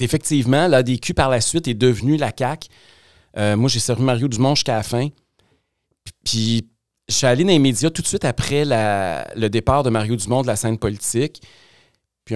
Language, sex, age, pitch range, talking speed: French, male, 40-59, 110-135 Hz, 200 wpm